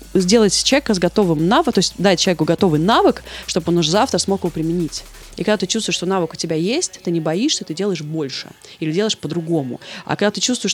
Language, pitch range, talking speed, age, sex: Russian, 160-210 Hz, 225 wpm, 20-39, female